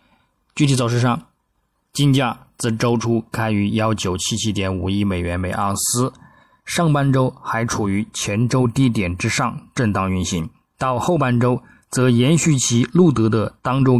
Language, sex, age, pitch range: Chinese, male, 20-39, 100-125 Hz